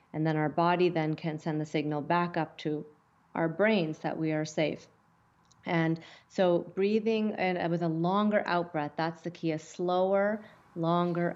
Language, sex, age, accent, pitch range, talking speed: English, female, 30-49, American, 155-180 Hz, 170 wpm